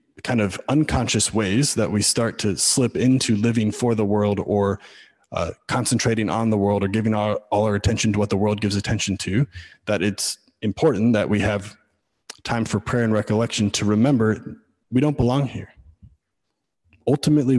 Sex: male